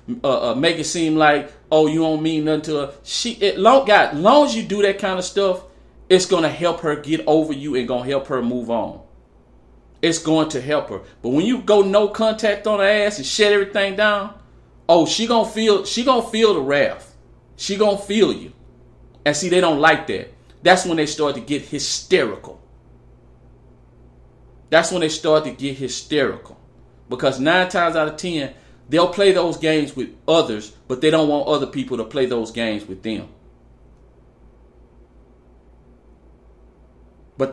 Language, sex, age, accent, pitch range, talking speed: English, male, 40-59, American, 115-190 Hz, 185 wpm